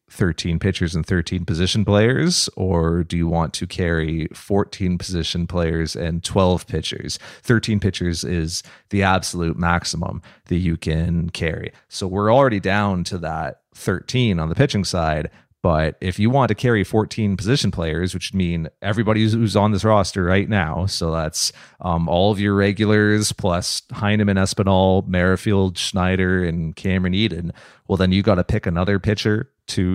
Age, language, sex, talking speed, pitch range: 30-49, English, male, 165 wpm, 90-105 Hz